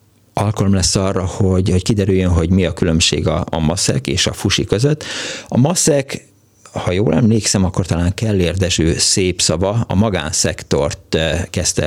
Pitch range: 90-115 Hz